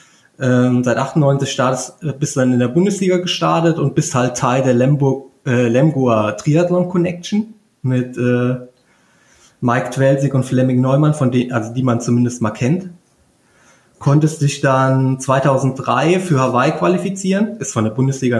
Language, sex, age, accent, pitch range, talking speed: German, male, 20-39, German, 125-160 Hz, 150 wpm